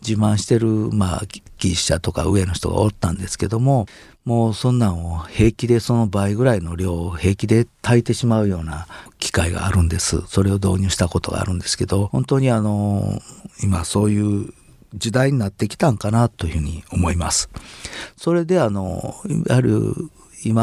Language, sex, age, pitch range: Japanese, male, 50-69, 95-115 Hz